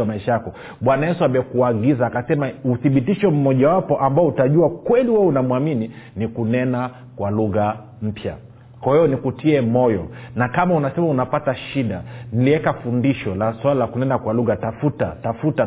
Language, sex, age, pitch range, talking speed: Swahili, male, 40-59, 115-145 Hz, 140 wpm